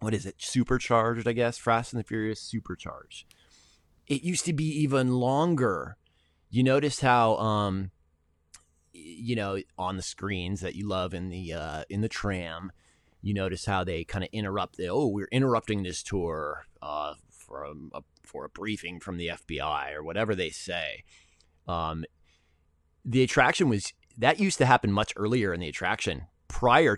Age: 30-49